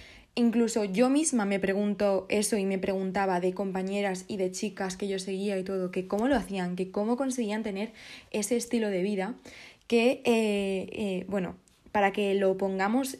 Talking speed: 175 wpm